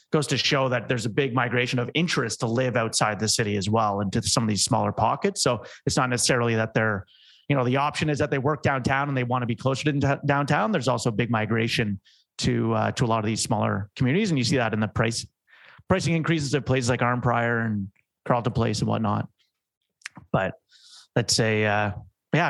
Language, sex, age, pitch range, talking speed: English, male, 30-49, 115-145 Hz, 220 wpm